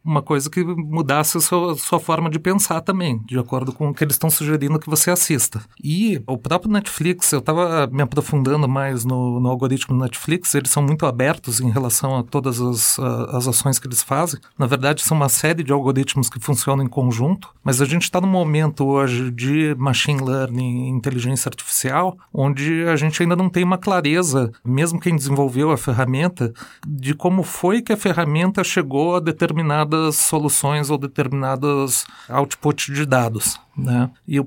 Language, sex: Portuguese, male